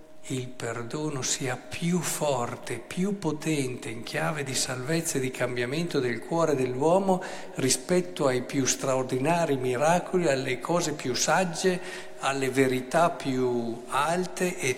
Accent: native